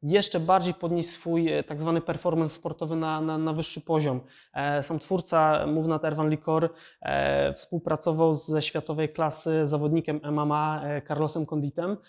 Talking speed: 130 wpm